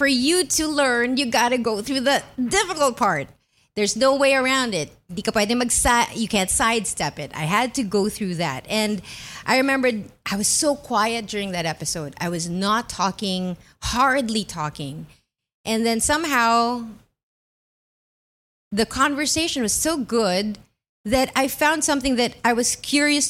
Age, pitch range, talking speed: 30-49, 210-270 Hz, 150 wpm